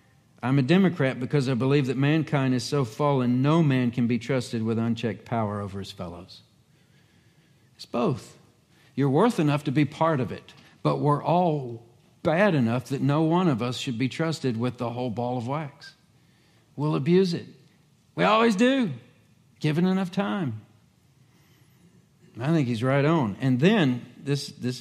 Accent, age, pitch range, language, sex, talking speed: American, 50-69, 115-145 Hz, English, male, 165 wpm